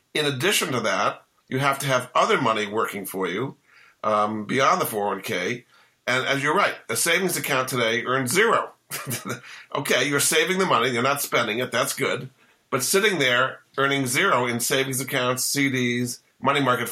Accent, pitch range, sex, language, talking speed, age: American, 120-145 Hz, male, English, 175 wpm, 50-69